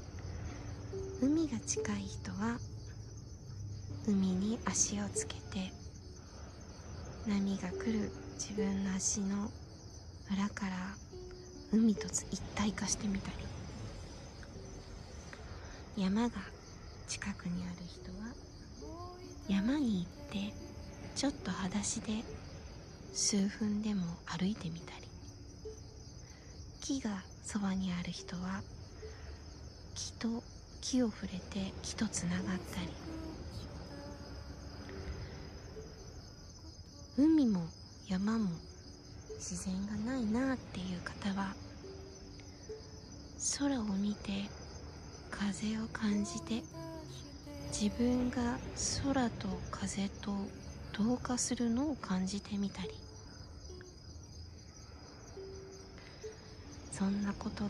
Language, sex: Japanese, female